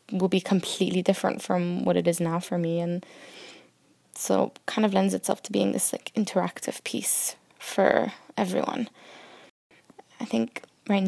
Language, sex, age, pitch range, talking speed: English, female, 10-29, 170-205 Hz, 155 wpm